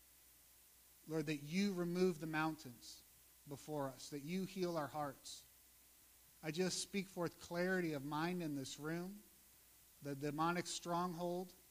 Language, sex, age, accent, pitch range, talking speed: English, male, 50-69, American, 130-175 Hz, 135 wpm